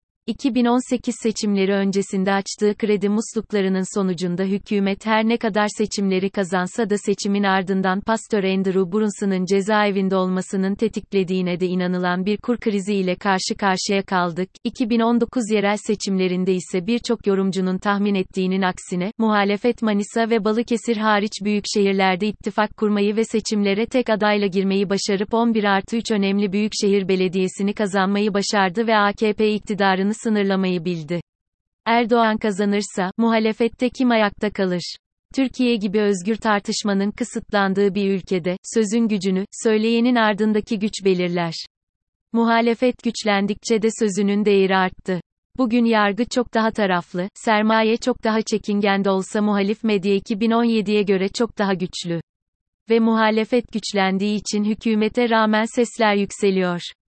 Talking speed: 125 wpm